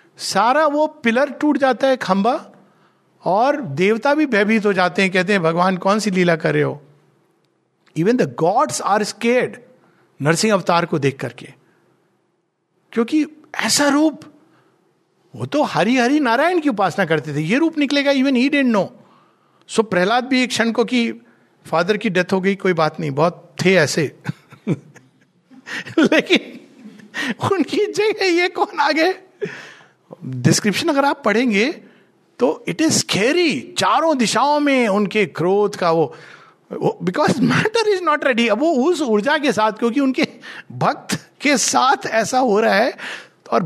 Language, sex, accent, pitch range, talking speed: Hindi, male, native, 170-280 Hz, 155 wpm